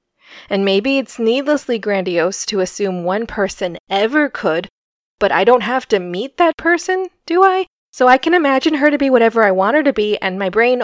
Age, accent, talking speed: 20-39, American, 205 wpm